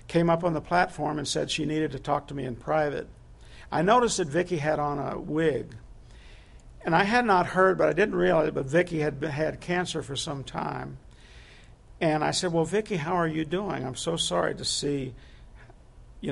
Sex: male